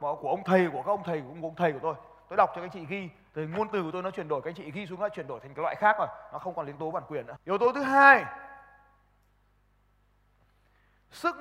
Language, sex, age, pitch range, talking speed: Vietnamese, male, 20-39, 125-205 Hz, 285 wpm